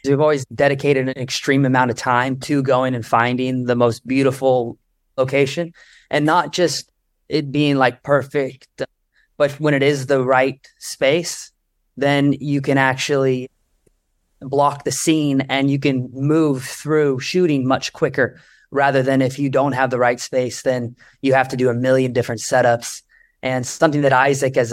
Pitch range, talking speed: 130-145 Hz, 165 wpm